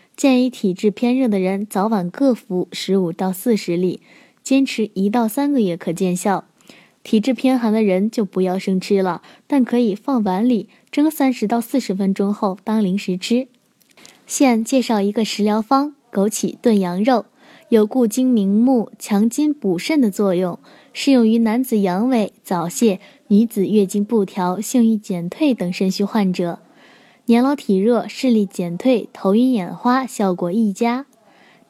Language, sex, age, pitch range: Chinese, female, 10-29, 195-255 Hz